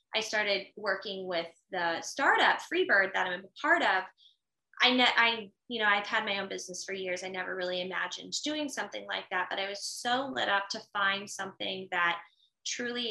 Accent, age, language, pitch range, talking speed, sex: American, 10-29, English, 195-240 Hz, 195 wpm, female